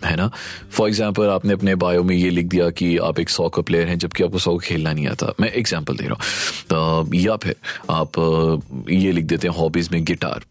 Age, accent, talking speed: 30-49, native, 230 wpm